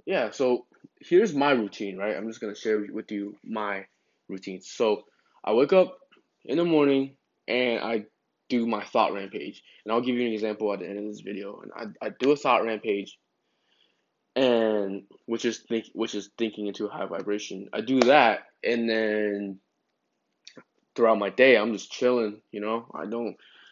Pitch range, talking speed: 105-135 Hz, 180 wpm